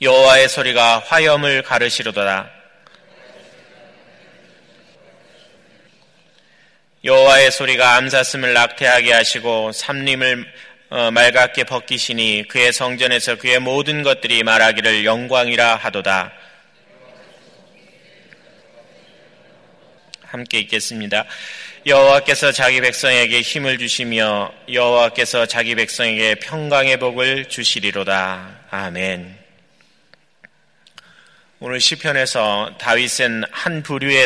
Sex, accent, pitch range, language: male, native, 110-130 Hz, Korean